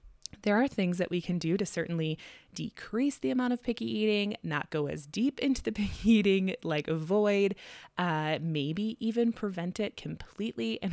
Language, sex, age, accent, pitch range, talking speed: English, female, 20-39, American, 155-200 Hz, 175 wpm